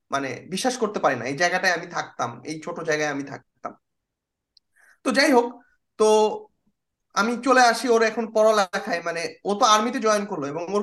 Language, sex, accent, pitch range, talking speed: Bengali, male, native, 175-245 Hz, 160 wpm